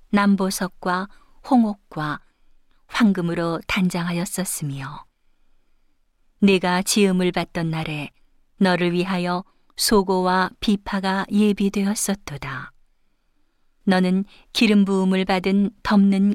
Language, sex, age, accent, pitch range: Korean, female, 40-59, native, 170-195 Hz